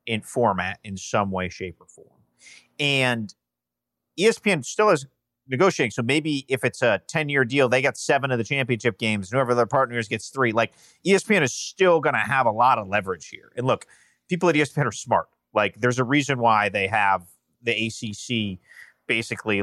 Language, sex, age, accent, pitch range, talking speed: English, male, 30-49, American, 110-140 Hz, 185 wpm